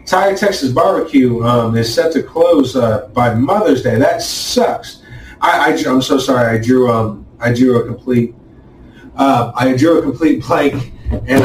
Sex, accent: male, American